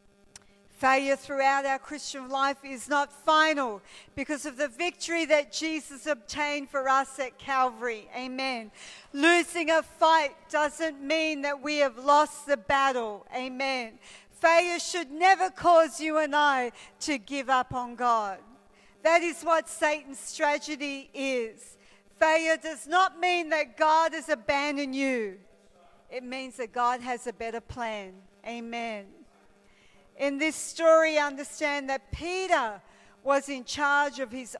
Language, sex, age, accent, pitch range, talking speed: English, female, 50-69, Australian, 245-310 Hz, 135 wpm